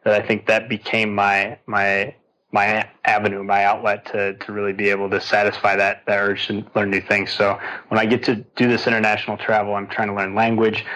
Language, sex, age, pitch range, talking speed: English, male, 20-39, 100-110 Hz, 215 wpm